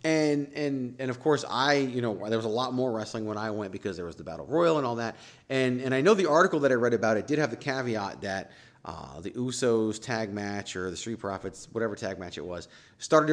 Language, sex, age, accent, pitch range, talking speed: English, male, 30-49, American, 110-140 Hz, 255 wpm